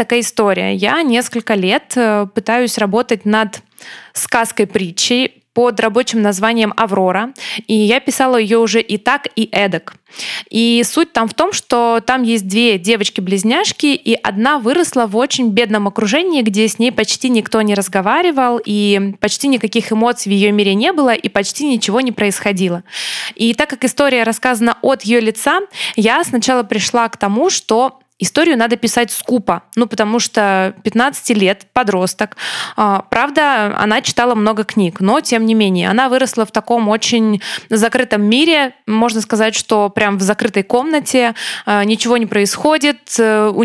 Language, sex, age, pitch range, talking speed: Russian, female, 20-39, 215-250 Hz, 155 wpm